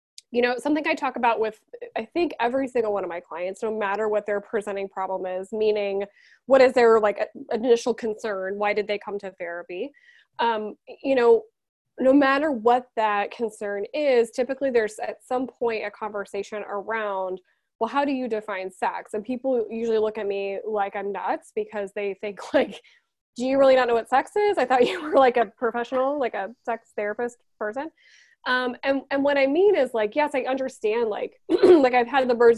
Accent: American